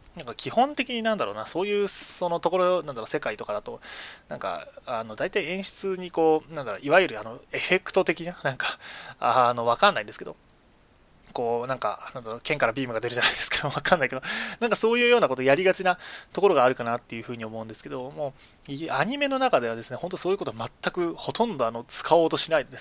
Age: 20-39